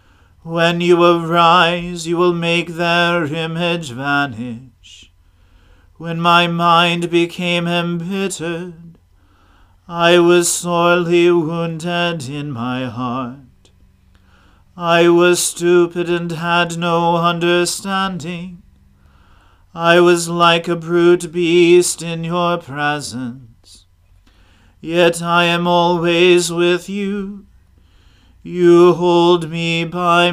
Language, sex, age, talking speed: English, male, 40-59, 95 wpm